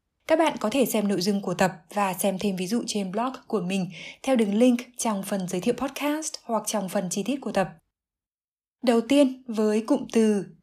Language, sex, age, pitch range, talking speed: Vietnamese, female, 20-39, 195-255 Hz, 215 wpm